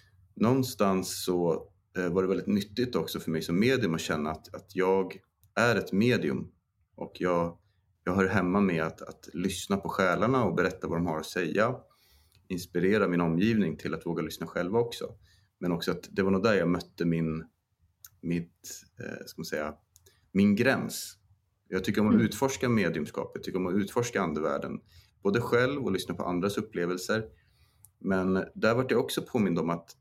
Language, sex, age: Swedish, male, 30-49